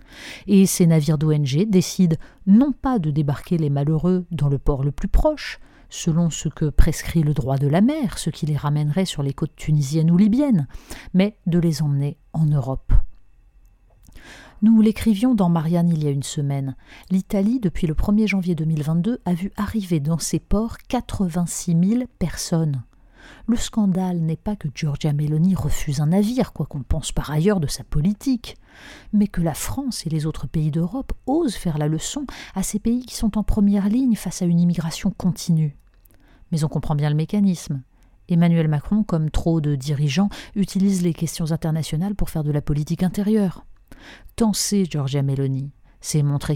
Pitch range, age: 150-200 Hz, 40-59